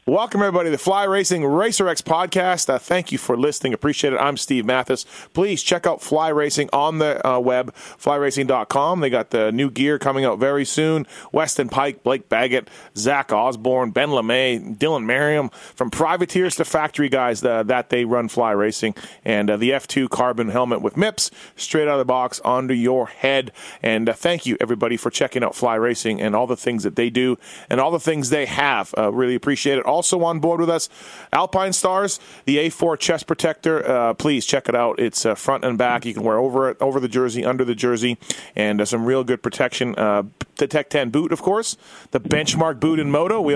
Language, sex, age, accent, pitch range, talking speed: English, male, 30-49, American, 125-155 Hz, 210 wpm